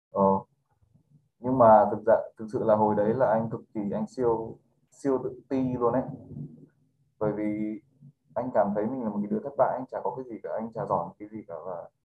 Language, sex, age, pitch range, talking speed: Vietnamese, male, 20-39, 105-125 Hz, 220 wpm